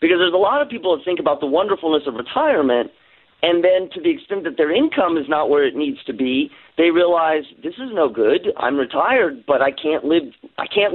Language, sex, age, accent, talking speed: English, male, 40-59, American, 230 wpm